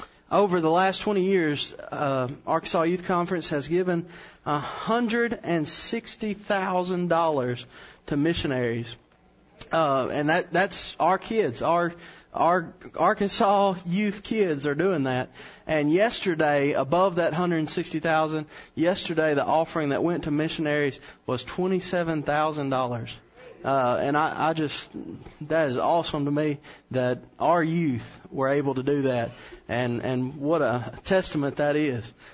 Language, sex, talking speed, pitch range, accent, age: English, male, 145 wpm, 145-200 Hz, American, 30-49